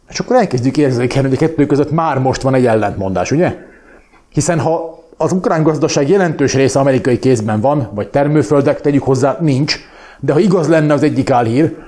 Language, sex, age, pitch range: Hungarian, male, 30-49, 135-160 Hz